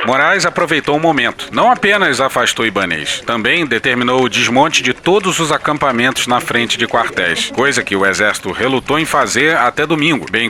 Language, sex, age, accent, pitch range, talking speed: Portuguese, male, 40-59, Brazilian, 115-150 Hz, 170 wpm